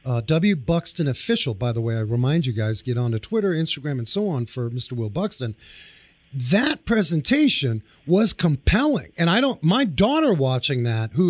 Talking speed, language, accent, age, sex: 185 wpm, English, American, 40-59, male